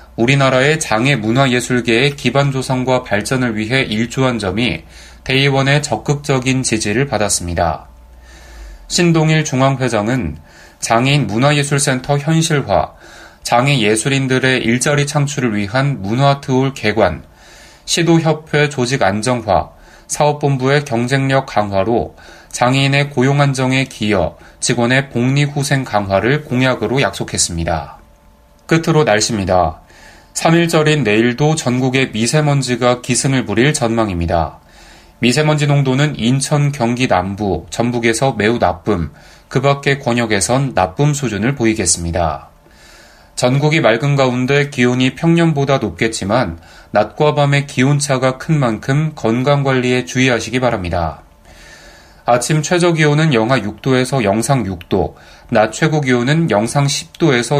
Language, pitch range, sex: Korean, 105-140 Hz, male